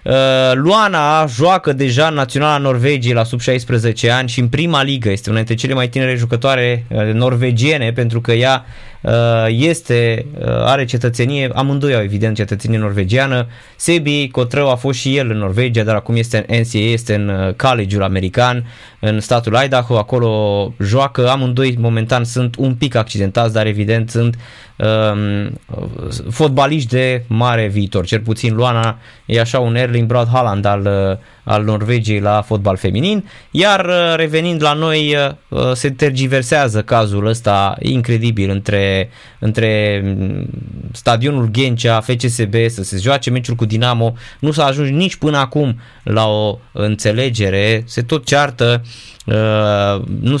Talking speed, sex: 140 wpm, male